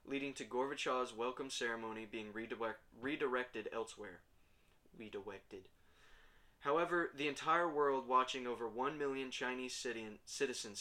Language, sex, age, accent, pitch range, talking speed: English, male, 20-39, American, 115-140 Hz, 105 wpm